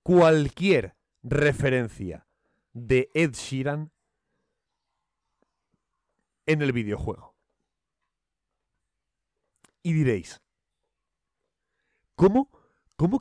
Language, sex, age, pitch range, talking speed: Spanish, male, 30-49, 115-160 Hz, 55 wpm